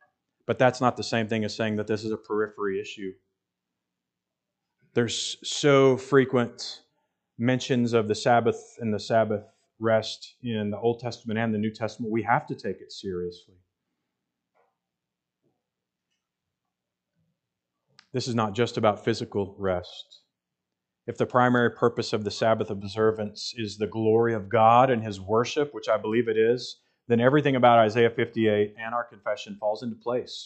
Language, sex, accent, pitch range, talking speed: English, male, American, 105-125 Hz, 155 wpm